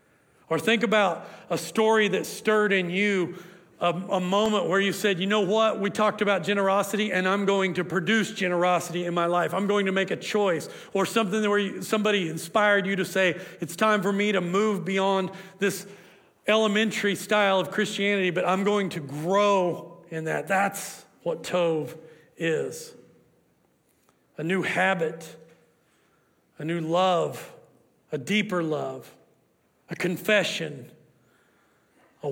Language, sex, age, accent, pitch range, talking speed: English, male, 40-59, American, 160-200 Hz, 150 wpm